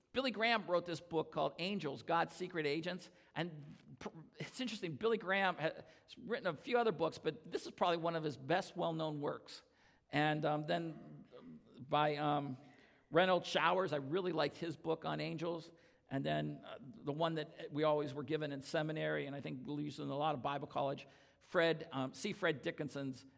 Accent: American